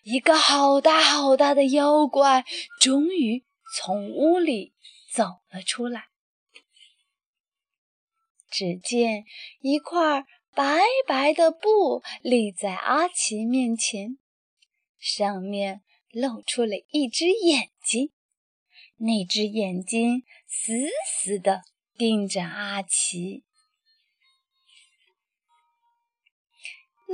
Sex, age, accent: female, 20-39, native